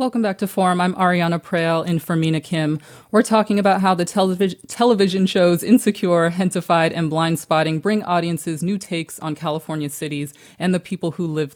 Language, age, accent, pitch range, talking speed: English, 30-49, American, 155-185 Hz, 180 wpm